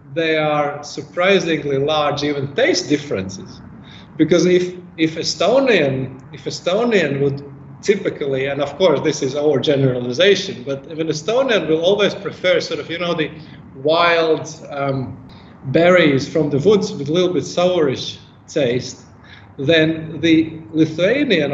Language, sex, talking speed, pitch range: English, male, 135 wpm, 135-175 Hz